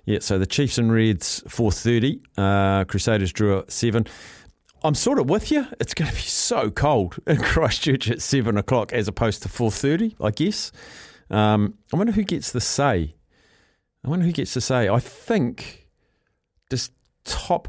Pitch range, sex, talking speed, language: 100-125 Hz, male, 175 wpm, English